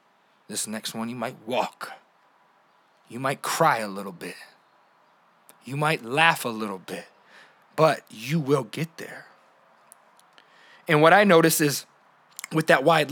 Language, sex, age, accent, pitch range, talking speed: English, male, 20-39, American, 130-175 Hz, 140 wpm